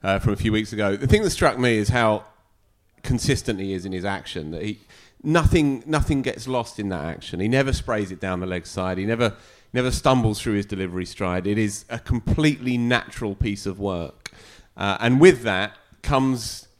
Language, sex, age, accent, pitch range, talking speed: English, male, 30-49, British, 105-130 Hz, 205 wpm